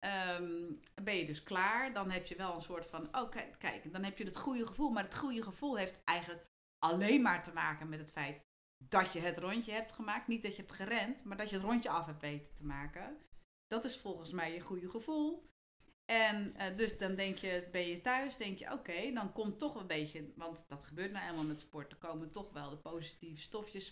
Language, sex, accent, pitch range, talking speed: Dutch, female, Dutch, 170-230 Hz, 240 wpm